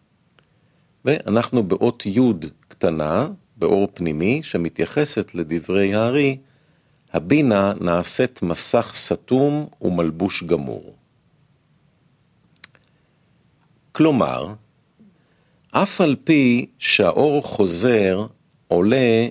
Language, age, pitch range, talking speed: Hebrew, 50-69, 100-150 Hz, 70 wpm